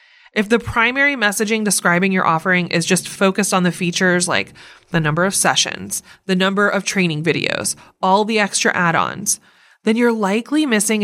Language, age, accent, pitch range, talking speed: English, 20-39, American, 180-225 Hz, 170 wpm